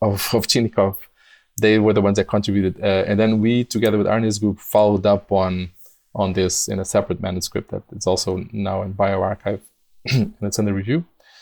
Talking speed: 195 wpm